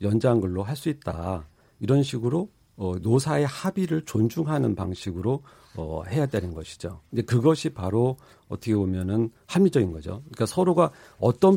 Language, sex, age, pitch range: Korean, male, 50-69, 100-135 Hz